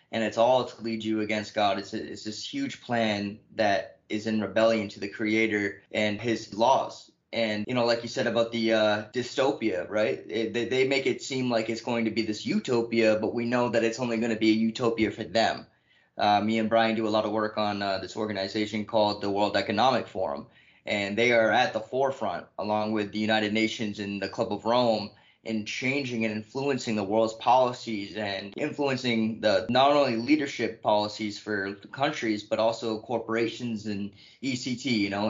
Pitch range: 105-125 Hz